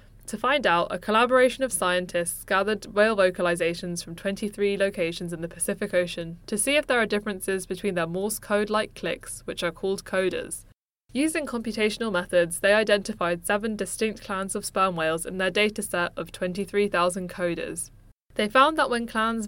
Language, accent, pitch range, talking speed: English, British, 180-215 Hz, 165 wpm